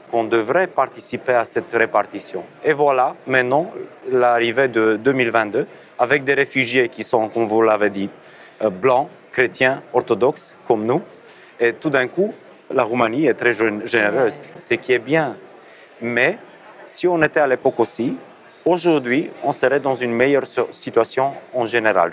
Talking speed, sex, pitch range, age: 150 wpm, male, 115-145 Hz, 30-49